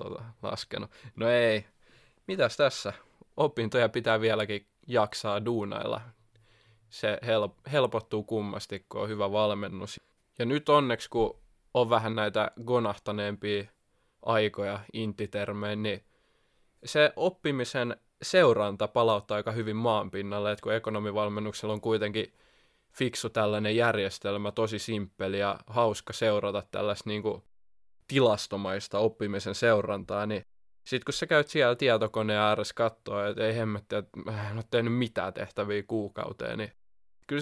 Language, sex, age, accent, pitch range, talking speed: Finnish, male, 20-39, native, 105-115 Hz, 120 wpm